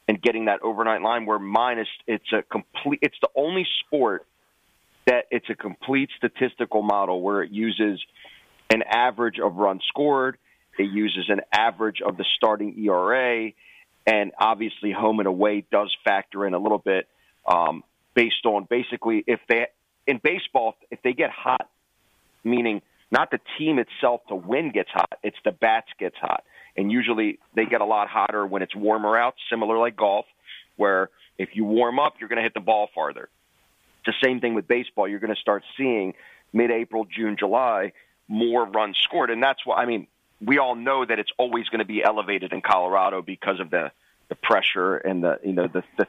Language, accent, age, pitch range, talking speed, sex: English, American, 30-49, 100-115 Hz, 185 wpm, male